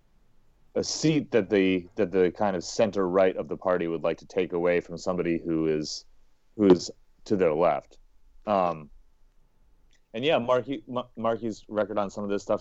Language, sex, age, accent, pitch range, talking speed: English, male, 30-49, American, 85-105 Hz, 180 wpm